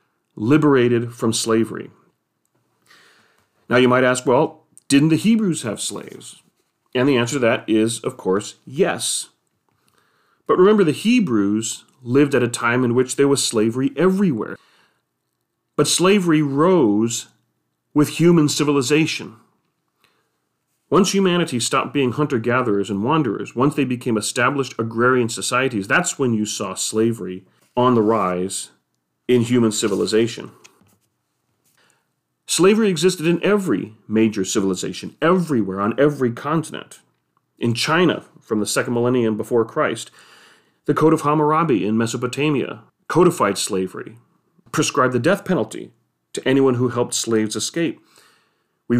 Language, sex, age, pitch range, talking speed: English, male, 40-59, 110-150 Hz, 125 wpm